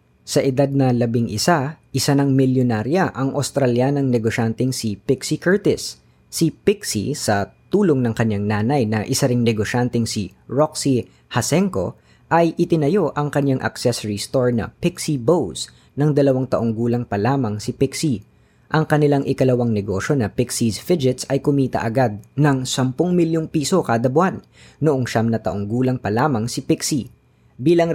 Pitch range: 110-145 Hz